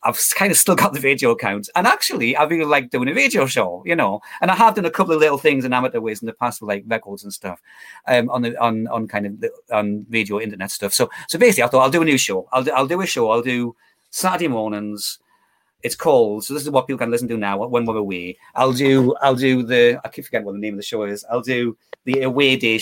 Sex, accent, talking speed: male, British, 280 wpm